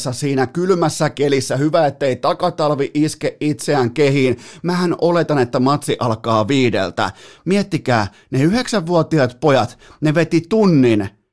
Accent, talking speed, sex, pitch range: native, 115 wpm, male, 125-170 Hz